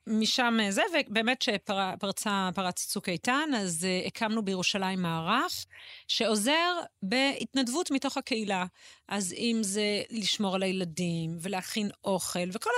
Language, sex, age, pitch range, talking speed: Hebrew, female, 30-49, 180-260 Hz, 120 wpm